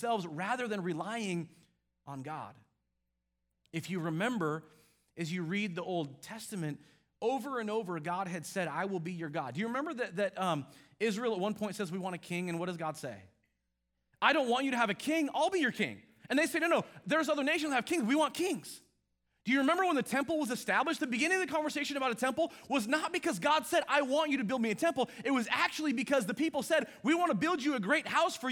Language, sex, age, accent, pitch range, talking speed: English, male, 30-49, American, 210-320 Hz, 245 wpm